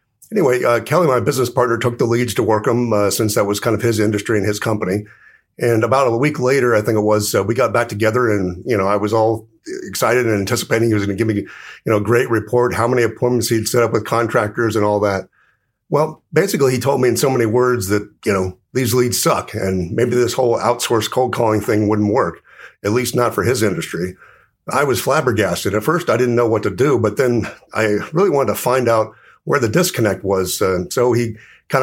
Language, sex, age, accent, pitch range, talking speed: English, male, 50-69, American, 105-125 Hz, 235 wpm